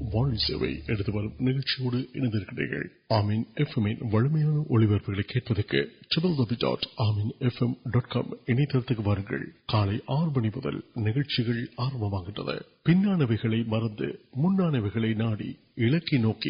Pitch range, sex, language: 110-145 Hz, male, Urdu